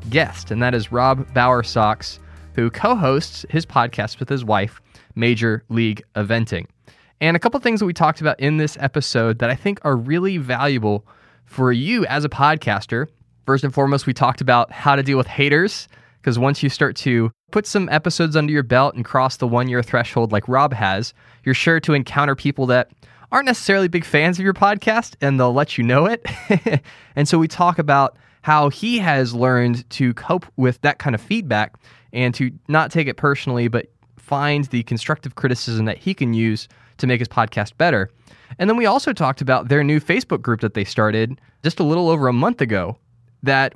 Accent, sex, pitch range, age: American, male, 120-150 Hz, 20-39